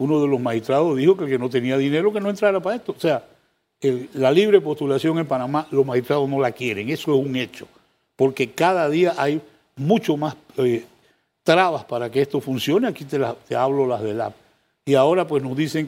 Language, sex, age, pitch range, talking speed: Spanish, male, 60-79, 130-160 Hz, 220 wpm